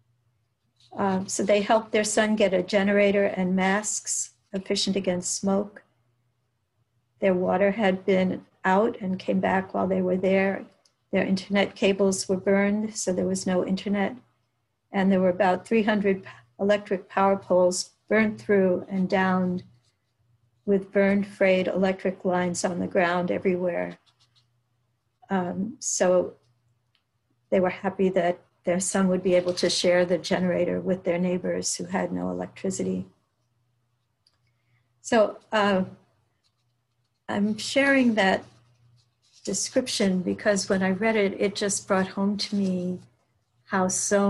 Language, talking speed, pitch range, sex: English, 135 wpm, 120-195 Hz, female